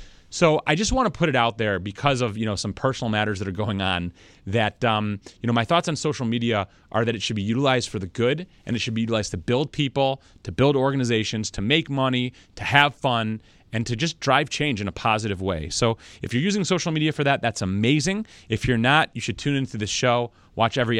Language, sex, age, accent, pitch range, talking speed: English, male, 30-49, American, 100-135 Hz, 245 wpm